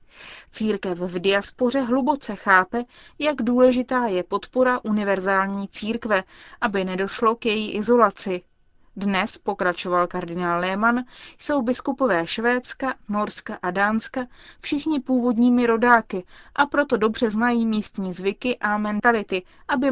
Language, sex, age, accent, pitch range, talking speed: Czech, female, 30-49, native, 195-245 Hz, 115 wpm